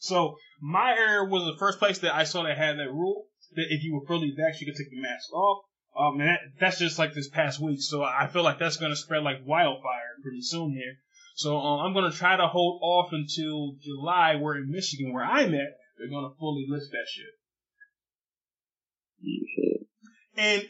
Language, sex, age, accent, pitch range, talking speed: English, male, 20-39, American, 145-180 Hz, 210 wpm